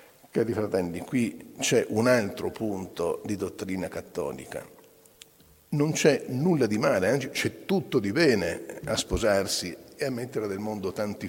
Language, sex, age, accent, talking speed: Italian, male, 50-69, native, 150 wpm